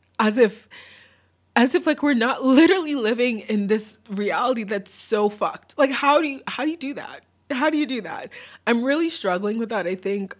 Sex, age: female, 20-39